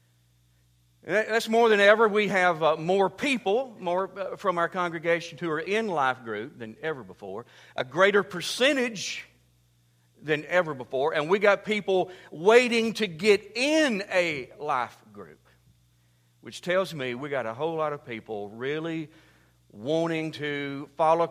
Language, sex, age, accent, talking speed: English, male, 50-69, American, 150 wpm